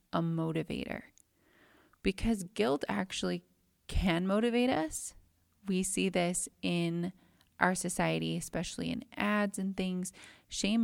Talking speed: 110 wpm